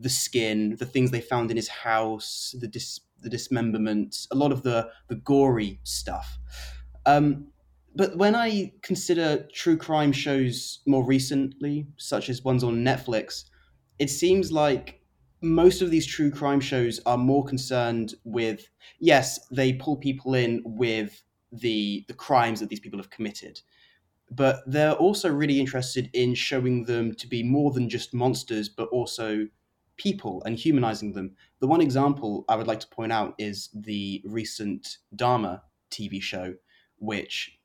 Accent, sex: British, male